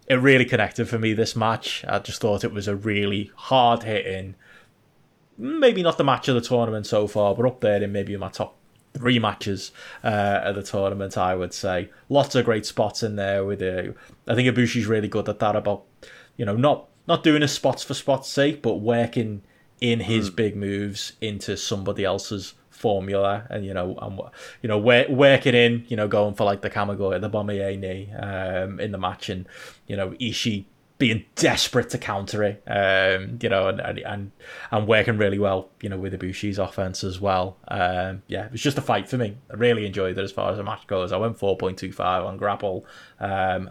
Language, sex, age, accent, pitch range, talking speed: English, male, 20-39, British, 95-120 Hz, 205 wpm